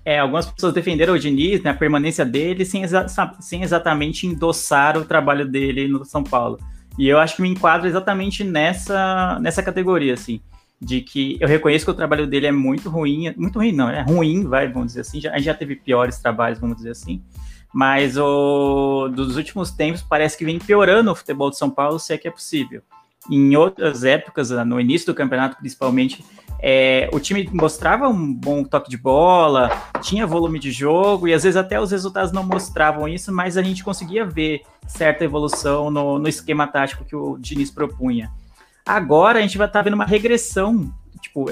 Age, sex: 20-39, male